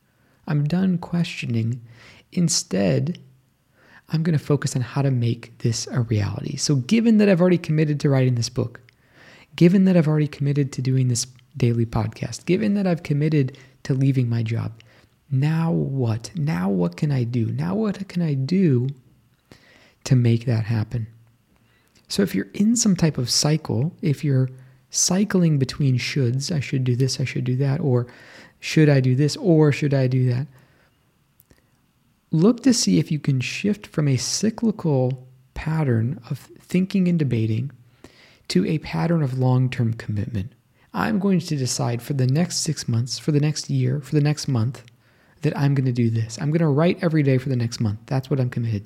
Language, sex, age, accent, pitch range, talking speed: English, male, 20-39, American, 125-155 Hz, 180 wpm